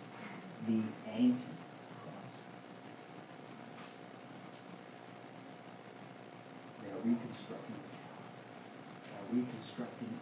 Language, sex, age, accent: English, male, 60-79, American